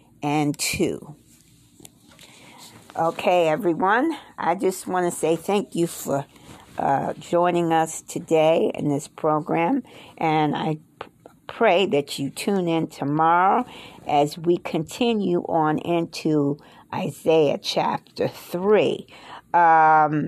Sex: female